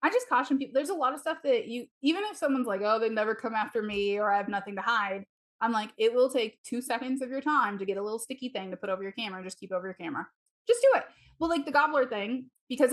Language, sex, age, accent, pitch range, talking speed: English, female, 20-39, American, 200-265 Hz, 290 wpm